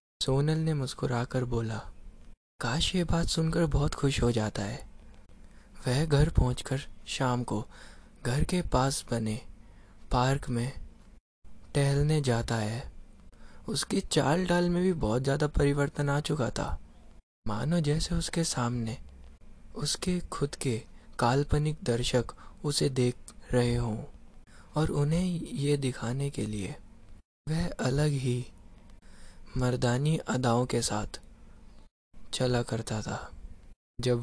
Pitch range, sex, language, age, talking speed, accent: 105-145 Hz, male, Hindi, 20-39, 120 wpm, native